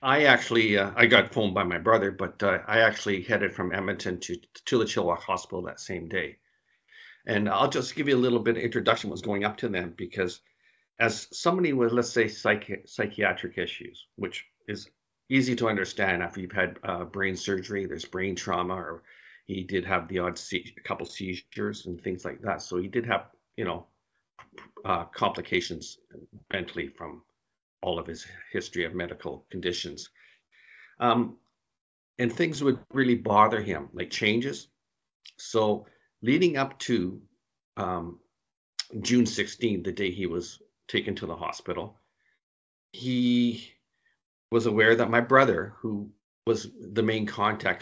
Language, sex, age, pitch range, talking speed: English, male, 50-69, 95-115 Hz, 155 wpm